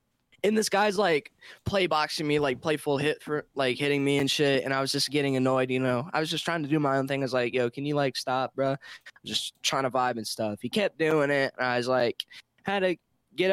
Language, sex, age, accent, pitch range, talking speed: English, male, 10-29, American, 135-185 Hz, 265 wpm